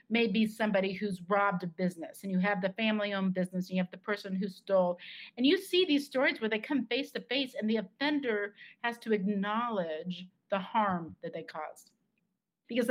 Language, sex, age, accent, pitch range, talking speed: English, female, 40-59, American, 185-220 Hz, 200 wpm